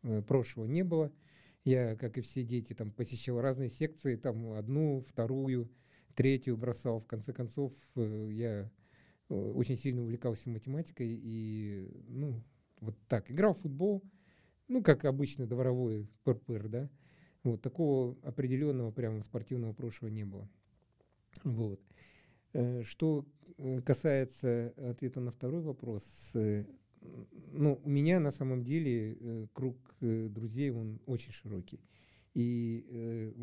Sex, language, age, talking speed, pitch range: male, Russian, 50-69, 120 wpm, 110-135 Hz